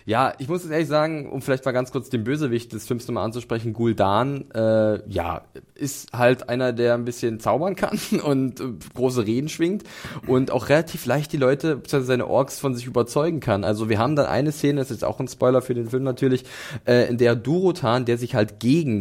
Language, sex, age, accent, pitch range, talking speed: German, male, 20-39, German, 110-140 Hz, 220 wpm